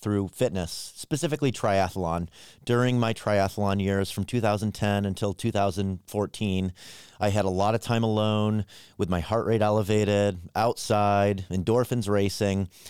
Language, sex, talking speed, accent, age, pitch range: English, male, 125 wpm, American, 30-49, 100-120 Hz